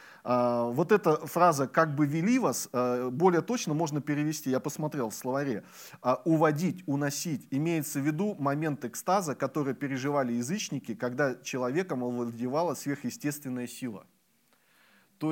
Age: 30-49